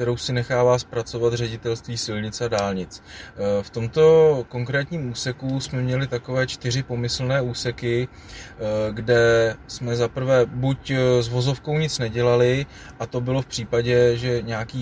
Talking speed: 135 wpm